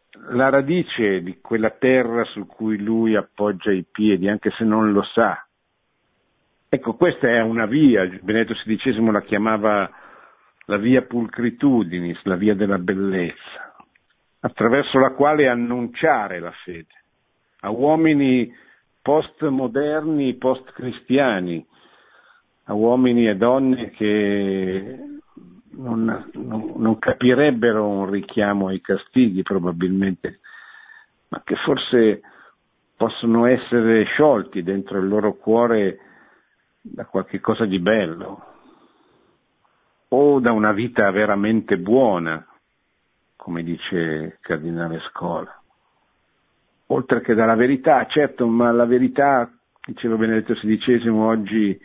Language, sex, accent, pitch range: Italian, male, native, 100-125 Hz